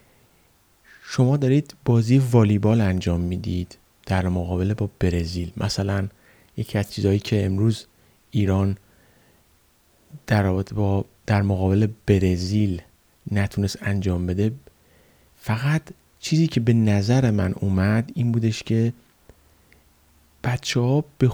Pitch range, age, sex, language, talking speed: 90-115 Hz, 30-49, male, Persian, 105 wpm